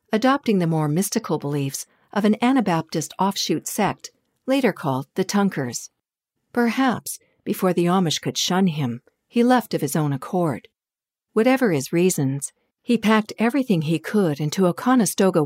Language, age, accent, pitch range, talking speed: English, 50-69, American, 150-210 Hz, 150 wpm